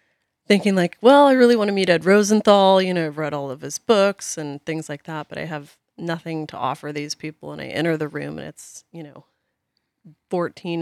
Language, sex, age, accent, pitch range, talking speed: English, female, 30-49, American, 145-170 Hz, 220 wpm